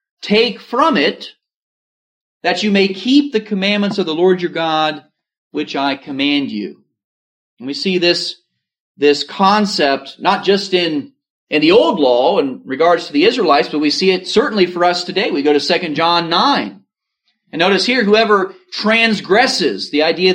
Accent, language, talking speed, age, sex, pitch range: American, English, 170 wpm, 40-59, male, 175-215 Hz